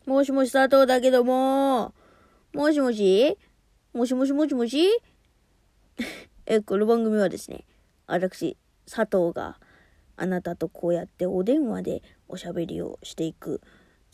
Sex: female